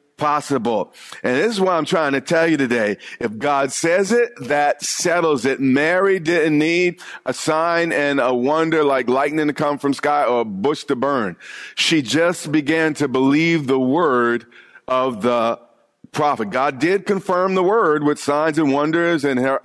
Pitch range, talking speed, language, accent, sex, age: 140-170 Hz, 175 wpm, English, American, male, 40-59